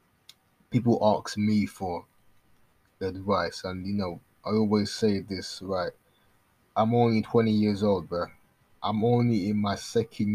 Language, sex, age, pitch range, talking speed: English, male, 20-39, 100-115 Hz, 145 wpm